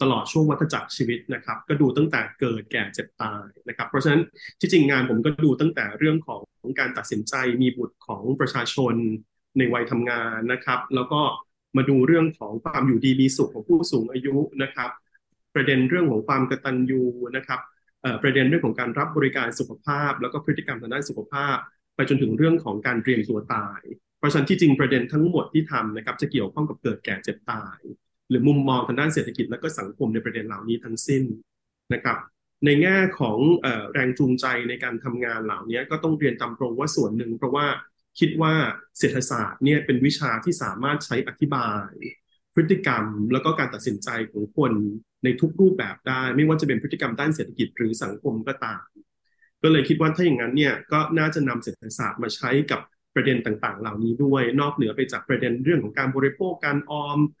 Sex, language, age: male, English, 20-39